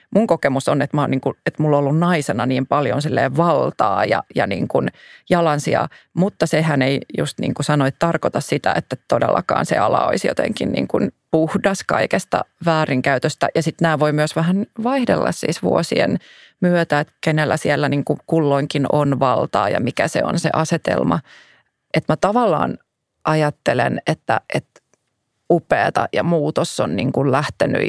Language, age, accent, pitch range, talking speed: Finnish, 30-49, native, 145-180 Hz, 155 wpm